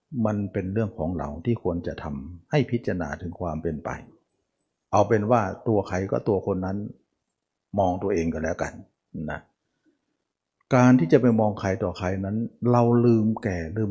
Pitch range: 90-130 Hz